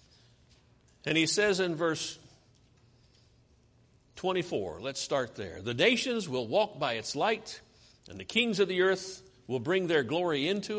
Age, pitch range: 50-69, 125-195 Hz